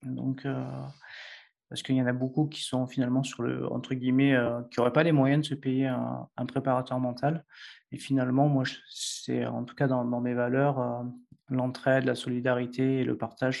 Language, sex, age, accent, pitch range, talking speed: French, male, 20-39, French, 125-140 Hz, 205 wpm